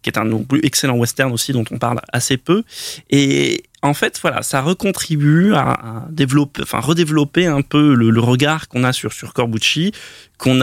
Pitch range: 115-145 Hz